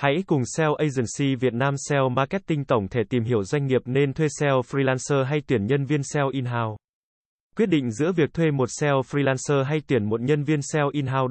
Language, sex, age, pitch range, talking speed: Vietnamese, male, 20-39, 120-150 Hz, 220 wpm